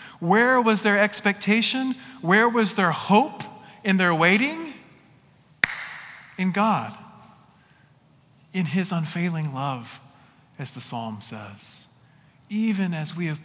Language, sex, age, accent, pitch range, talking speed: English, male, 40-59, American, 140-210 Hz, 110 wpm